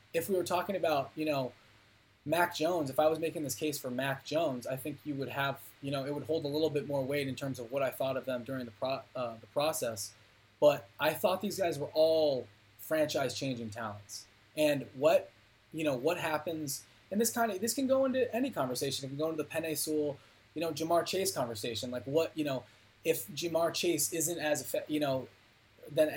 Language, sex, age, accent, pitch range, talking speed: English, male, 20-39, American, 125-160 Hz, 220 wpm